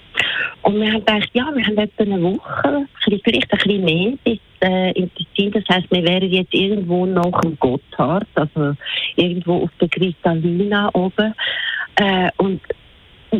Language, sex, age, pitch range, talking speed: German, female, 60-79, 175-210 Hz, 160 wpm